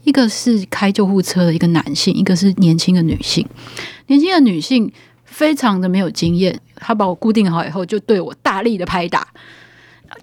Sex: female